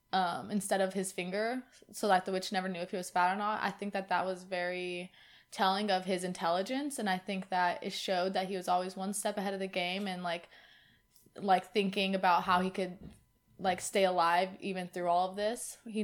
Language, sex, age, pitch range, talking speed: English, female, 20-39, 180-205 Hz, 225 wpm